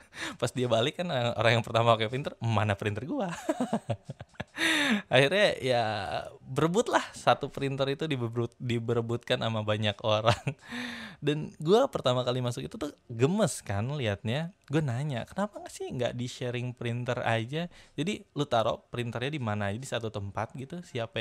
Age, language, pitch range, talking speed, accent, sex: 20-39, Indonesian, 110-145 Hz, 155 wpm, native, male